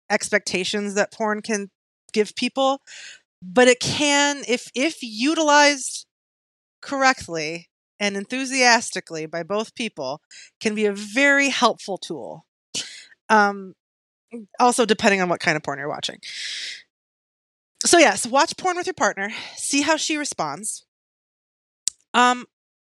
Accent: American